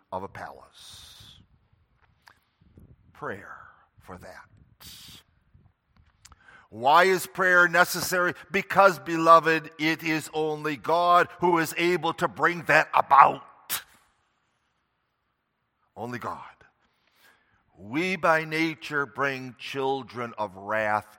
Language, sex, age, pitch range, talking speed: English, male, 50-69, 105-165 Hz, 90 wpm